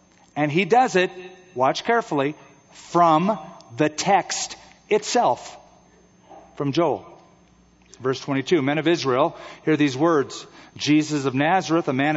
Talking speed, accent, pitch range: 125 wpm, American, 135-170 Hz